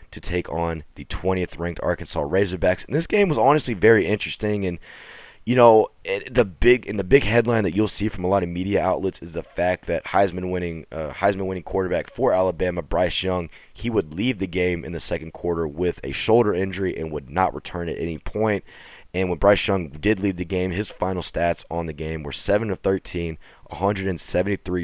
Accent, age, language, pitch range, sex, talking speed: American, 20-39, English, 80-100 Hz, male, 210 wpm